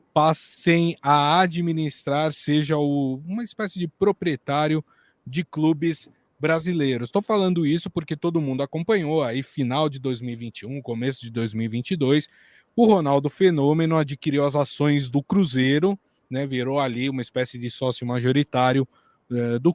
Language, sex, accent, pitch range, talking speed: Portuguese, male, Brazilian, 130-170 Hz, 135 wpm